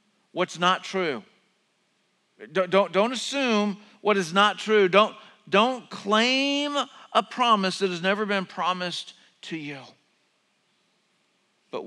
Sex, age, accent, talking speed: male, 50-69, American, 120 wpm